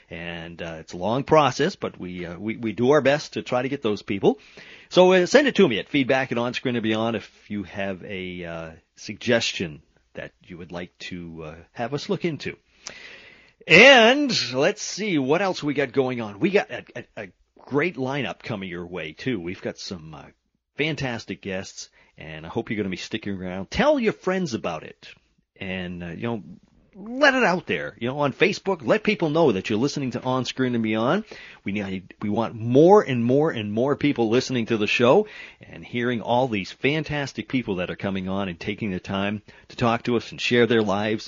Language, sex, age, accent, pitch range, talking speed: English, male, 40-59, American, 95-140 Hz, 215 wpm